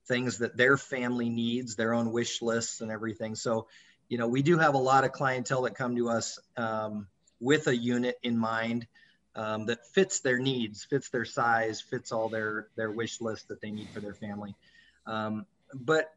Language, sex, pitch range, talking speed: English, male, 110-125 Hz, 195 wpm